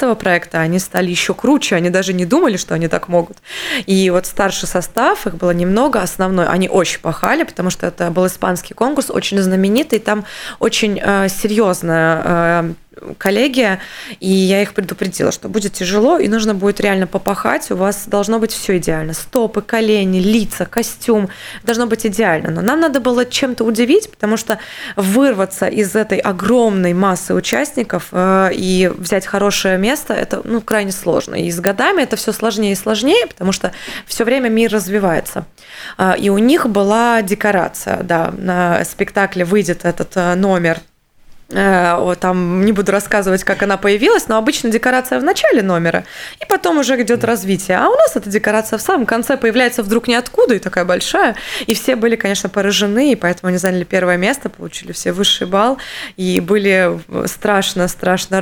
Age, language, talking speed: 20-39, Russian, 165 wpm